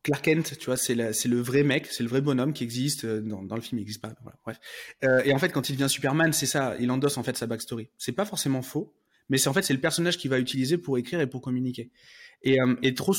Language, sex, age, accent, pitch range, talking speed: French, male, 20-39, French, 120-145 Hz, 290 wpm